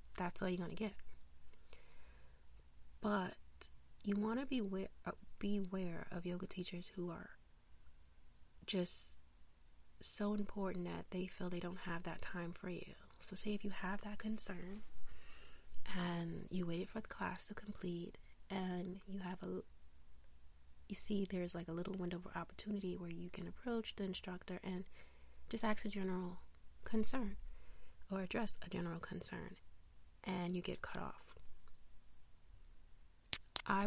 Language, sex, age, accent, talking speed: English, female, 30-49, American, 145 wpm